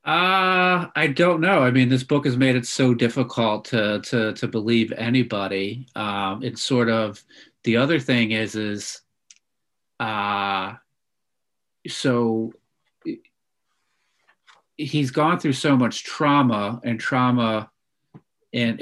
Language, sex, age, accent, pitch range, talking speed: English, male, 40-59, American, 105-125 Hz, 120 wpm